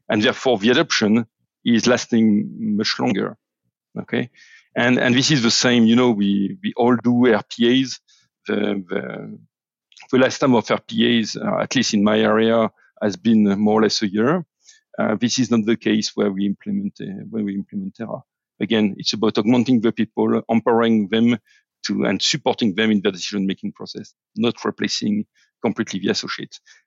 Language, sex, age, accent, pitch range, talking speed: English, male, 50-69, French, 105-125 Hz, 170 wpm